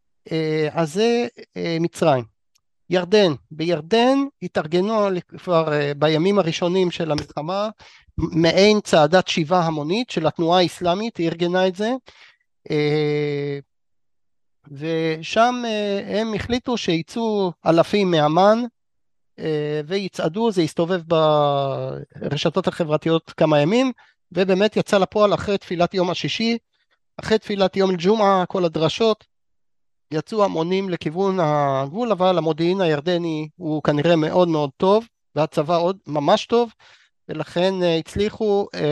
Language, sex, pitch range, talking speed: Hebrew, male, 150-195 Hz, 110 wpm